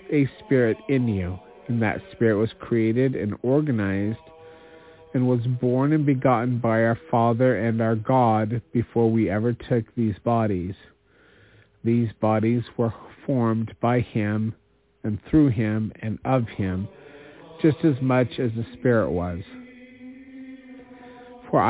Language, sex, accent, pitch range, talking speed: English, male, American, 110-150 Hz, 135 wpm